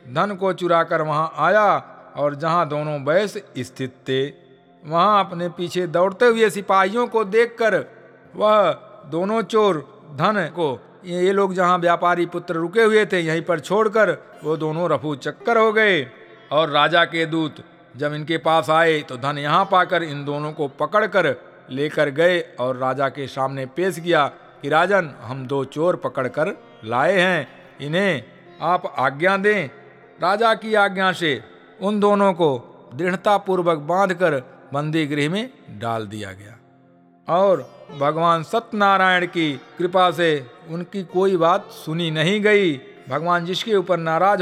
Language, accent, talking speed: Hindi, native, 150 wpm